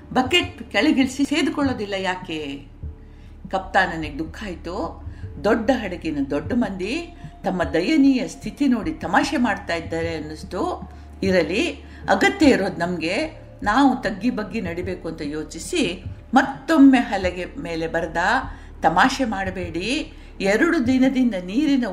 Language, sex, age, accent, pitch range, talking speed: Kannada, female, 50-69, native, 175-280 Hz, 105 wpm